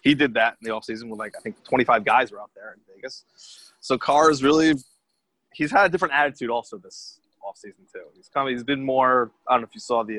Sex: male